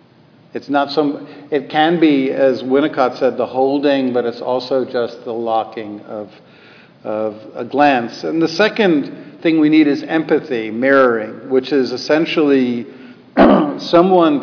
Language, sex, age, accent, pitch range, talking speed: English, male, 50-69, American, 120-145 Hz, 140 wpm